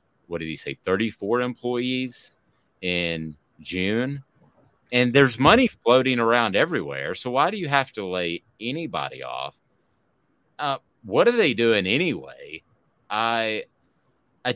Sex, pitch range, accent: male, 95-130 Hz, American